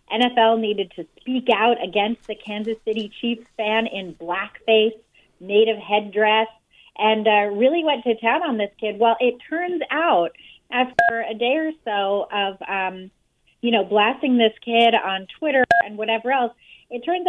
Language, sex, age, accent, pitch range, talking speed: English, female, 30-49, American, 200-240 Hz, 165 wpm